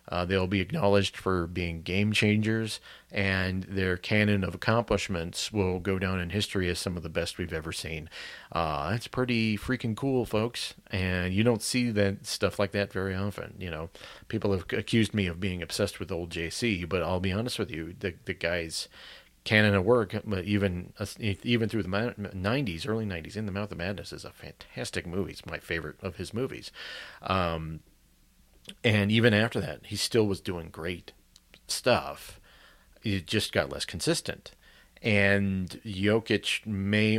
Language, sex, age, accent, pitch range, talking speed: English, male, 40-59, American, 90-110 Hz, 175 wpm